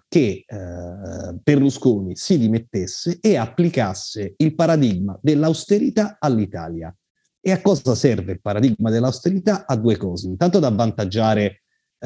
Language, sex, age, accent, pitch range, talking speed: Italian, male, 30-49, native, 100-145 Hz, 120 wpm